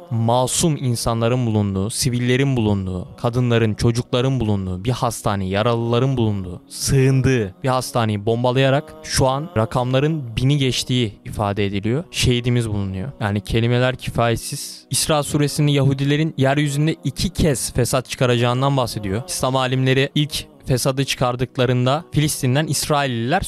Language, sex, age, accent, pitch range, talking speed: Turkish, male, 20-39, native, 115-150 Hz, 110 wpm